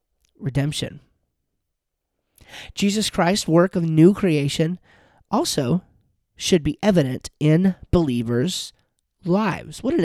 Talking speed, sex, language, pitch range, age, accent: 95 wpm, male, English, 140-195 Hz, 30-49, American